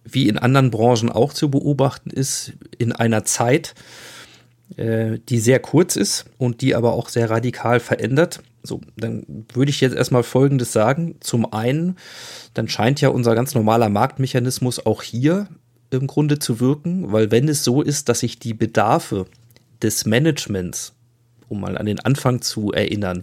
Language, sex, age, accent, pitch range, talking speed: German, male, 40-59, German, 115-130 Hz, 165 wpm